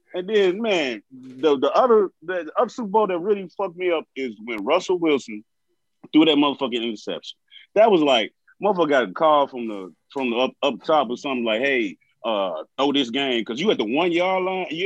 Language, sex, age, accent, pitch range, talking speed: English, male, 30-49, American, 140-215 Hz, 220 wpm